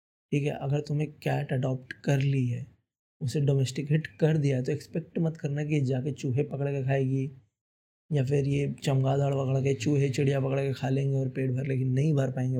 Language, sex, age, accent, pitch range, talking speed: Hindi, male, 20-39, native, 130-145 Hz, 205 wpm